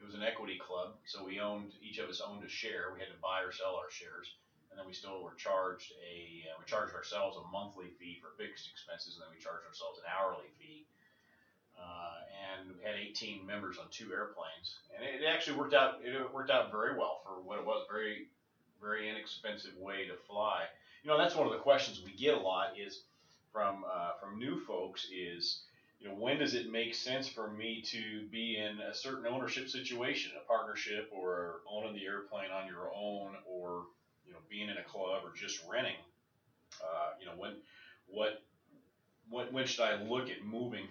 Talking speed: 210 wpm